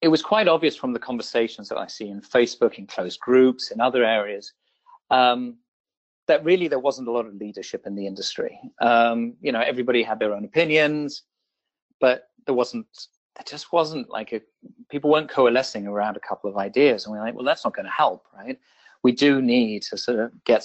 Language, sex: English, male